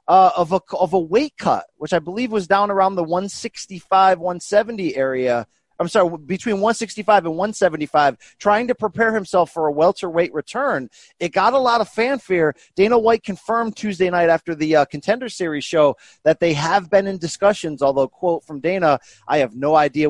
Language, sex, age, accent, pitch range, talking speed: English, male, 30-49, American, 155-205 Hz, 180 wpm